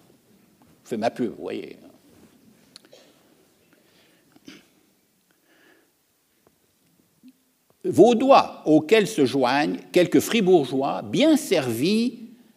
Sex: male